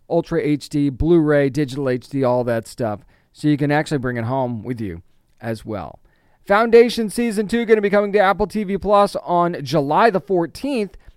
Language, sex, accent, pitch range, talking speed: English, male, American, 130-165 Hz, 185 wpm